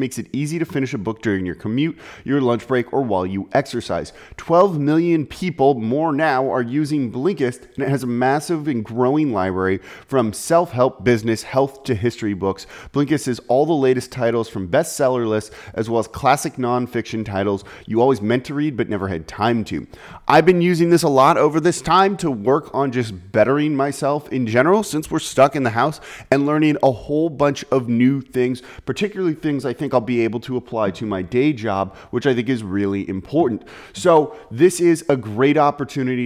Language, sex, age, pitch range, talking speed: English, male, 30-49, 110-145 Hz, 200 wpm